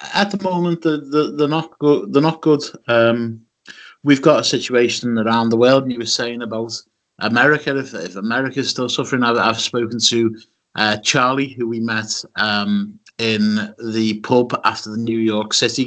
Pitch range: 110-125 Hz